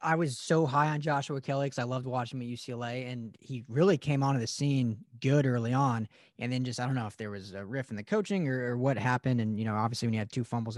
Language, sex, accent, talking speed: English, male, American, 285 wpm